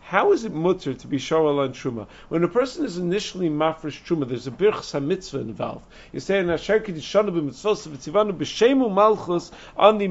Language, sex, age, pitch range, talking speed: English, male, 50-69, 145-190 Hz, 185 wpm